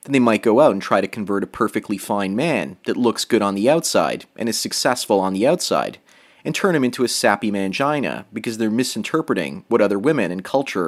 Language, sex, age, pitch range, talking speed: English, male, 30-49, 100-145 Hz, 220 wpm